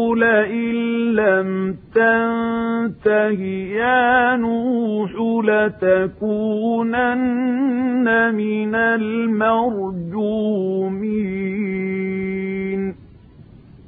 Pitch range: 205-235 Hz